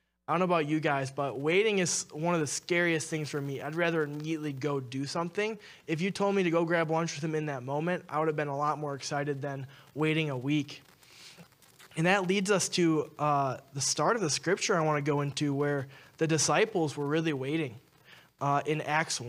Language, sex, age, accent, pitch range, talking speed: English, male, 20-39, American, 145-170 Hz, 225 wpm